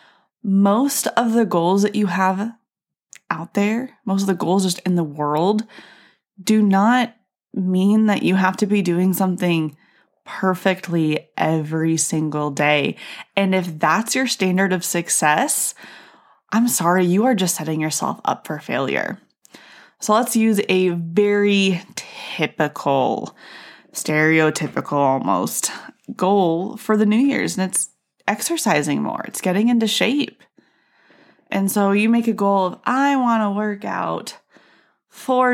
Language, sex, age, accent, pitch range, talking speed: English, female, 20-39, American, 175-220 Hz, 140 wpm